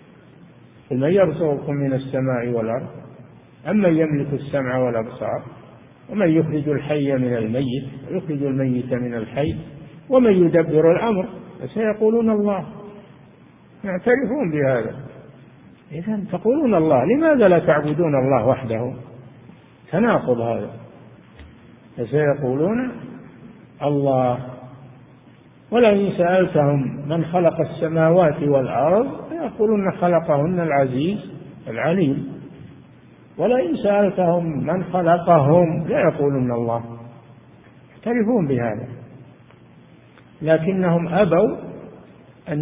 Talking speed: 85 wpm